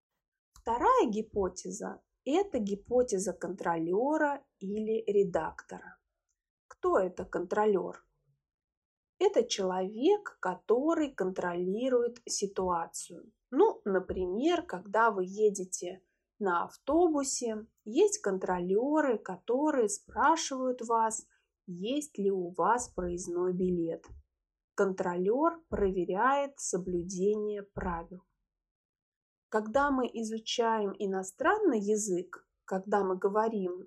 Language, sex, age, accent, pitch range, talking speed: Russian, female, 20-39, native, 185-260 Hz, 80 wpm